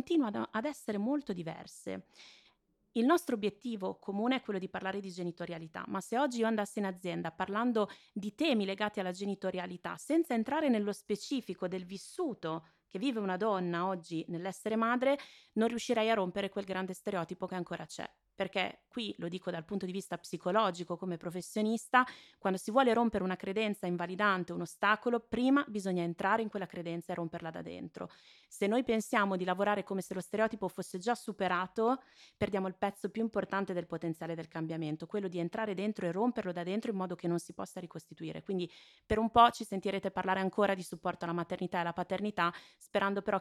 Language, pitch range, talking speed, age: Italian, 175-215 Hz, 185 wpm, 20-39